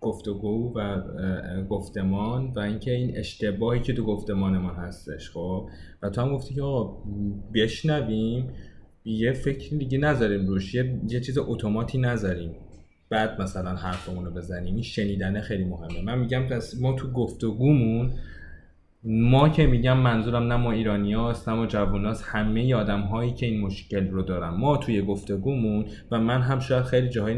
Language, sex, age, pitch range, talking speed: Persian, male, 20-39, 95-130 Hz, 155 wpm